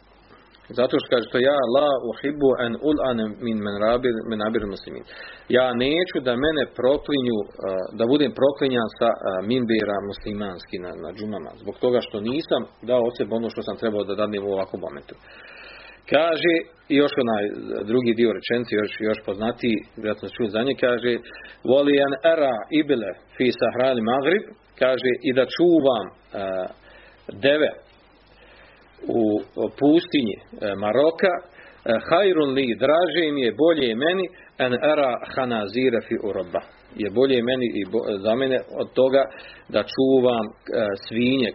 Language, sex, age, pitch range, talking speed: Croatian, male, 40-59, 105-135 Hz, 115 wpm